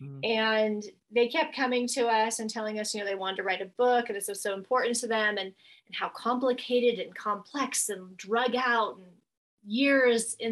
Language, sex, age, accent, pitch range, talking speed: English, female, 30-49, American, 205-245 Hz, 205 wpm